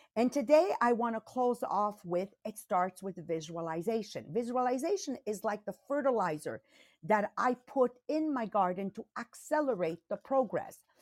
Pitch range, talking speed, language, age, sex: 180-255 Hz, 140 wpm, English, 50-69, female